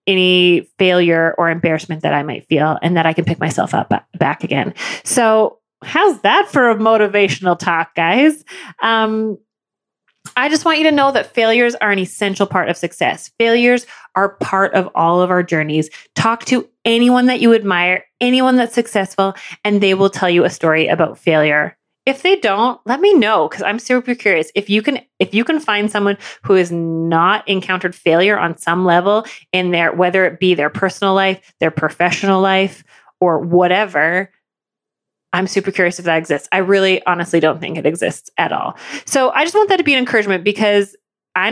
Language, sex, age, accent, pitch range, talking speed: English, female, 30-49, American, 175-230 Hz, 190 wpm